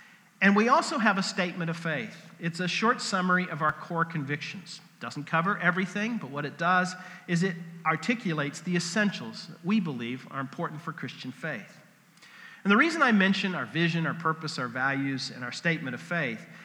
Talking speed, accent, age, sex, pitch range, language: 190 wpm, American, 40-59, male, 150-195 Hz, English